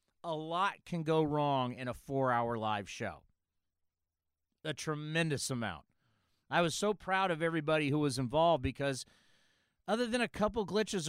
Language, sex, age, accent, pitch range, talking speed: English, male, 40-59, American, 120-180 Hz, 150 wpm